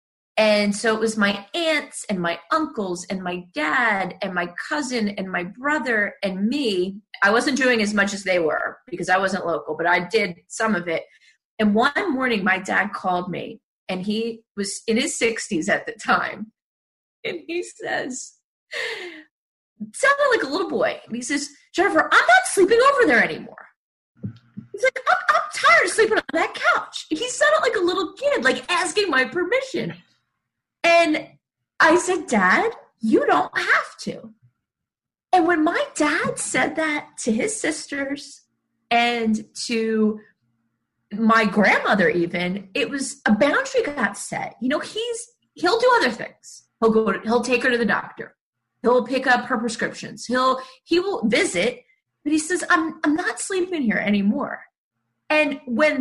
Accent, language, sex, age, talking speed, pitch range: American, English, female, 30-49, 165 wpm, 210-325 Hz